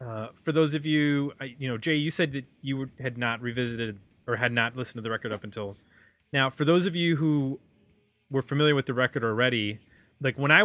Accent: American